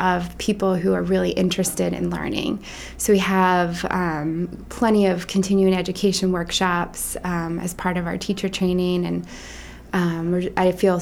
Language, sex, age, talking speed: English, female, 20-39, 150 wpm